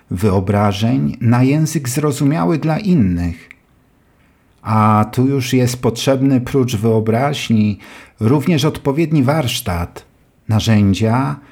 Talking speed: 90 wpm